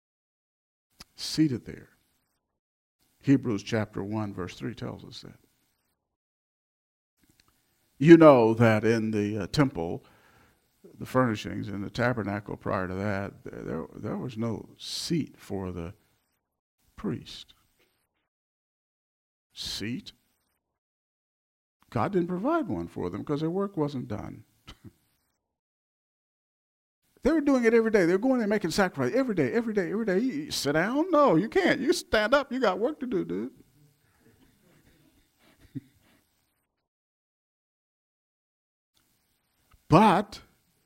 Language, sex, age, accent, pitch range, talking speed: English, male, 50-69, American, 105-155 Hz, 115 wpm